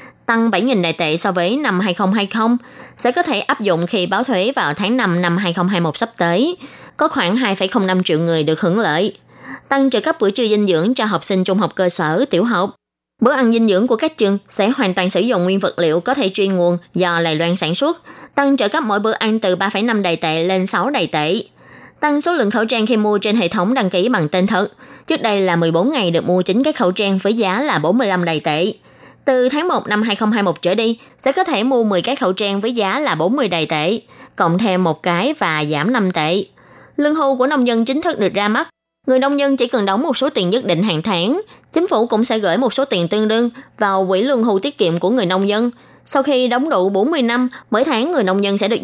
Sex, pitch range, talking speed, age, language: female, 180-250 Hz, 250 wpm, 20-39, Vietnamese